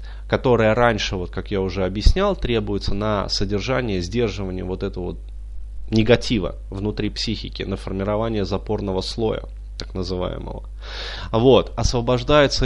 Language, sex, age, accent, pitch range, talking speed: Russian, male, 20-39, native, 95-115 Hz, 120 wpm